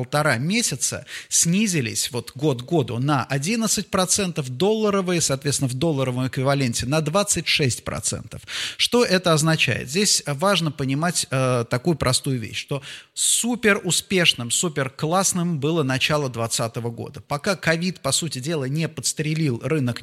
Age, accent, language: 30-49, native, Russian